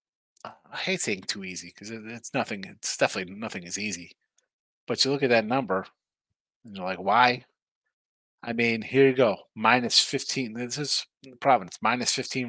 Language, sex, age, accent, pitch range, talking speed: English, male, 30-49, American, 110-130 Hz, 175 wpm